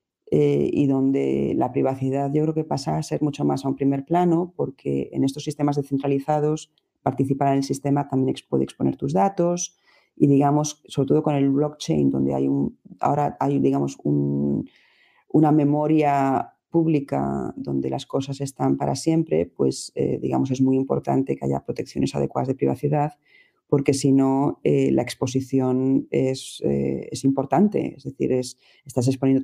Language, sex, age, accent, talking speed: Spanish, female, 40-59, Spanish, 165 wpm